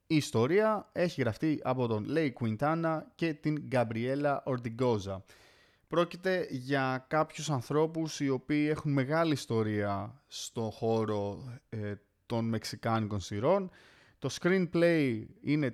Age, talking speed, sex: 30-49, 115 wpm, male